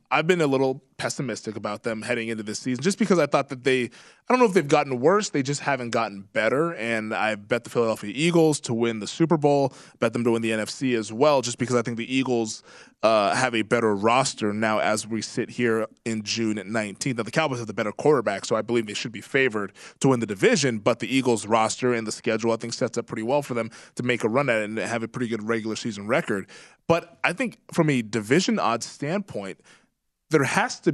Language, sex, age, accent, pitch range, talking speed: English, male, 20-39, American, 115-140 Hz, 250 wpm